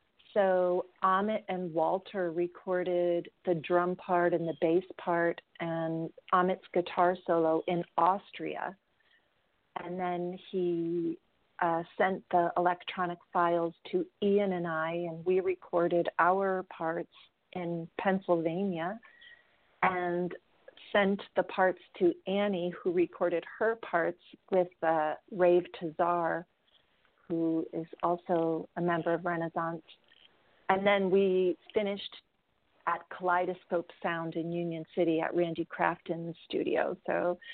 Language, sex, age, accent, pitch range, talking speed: English, female, 40-59, American, 170-200 Hz, 115 wpm